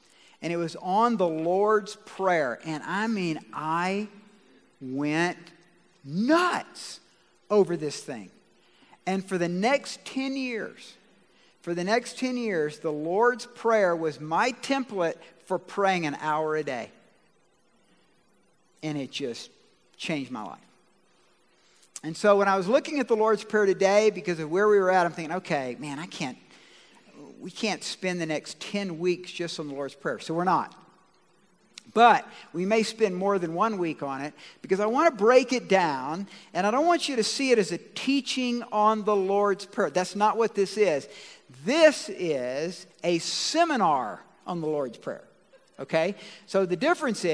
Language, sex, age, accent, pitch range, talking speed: English, male, 50-69, American, 170-225 Hz, 165 wpm